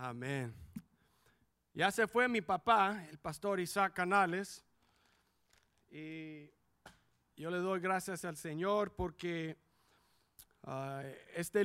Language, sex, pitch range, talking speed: English, male, 170-210 Hz, 100 wpm